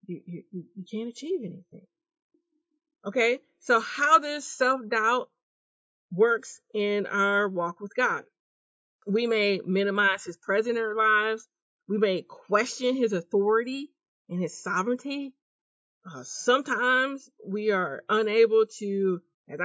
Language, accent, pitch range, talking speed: English, American, 200-260 Hz, 115 wpm